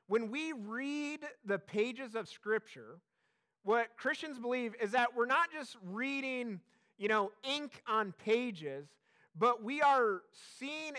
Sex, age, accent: male, 30-49, American